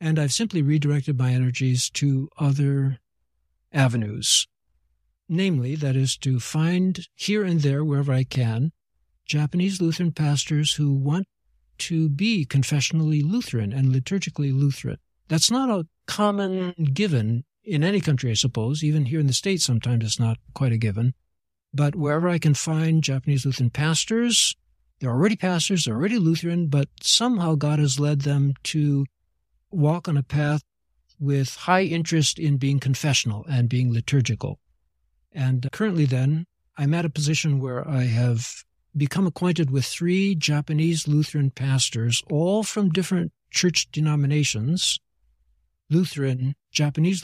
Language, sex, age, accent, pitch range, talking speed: English, male, 60-79, American, 130-170 Hz, 140 wpm